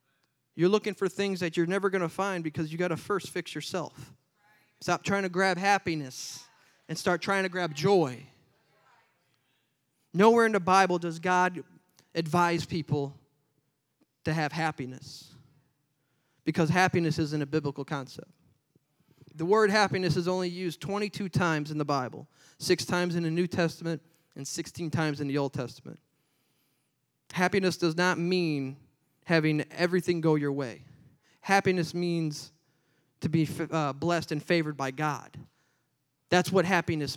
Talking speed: 145 wpm